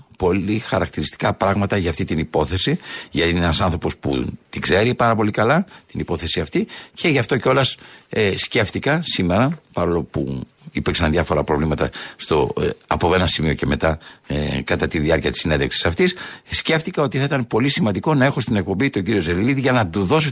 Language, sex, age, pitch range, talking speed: Greek, male, 60-79, 100-150 Hz, 185 wpm